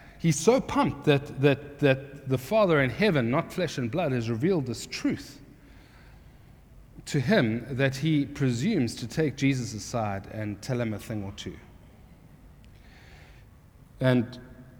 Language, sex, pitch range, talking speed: English, male, 115-150 Hz, 140 wpm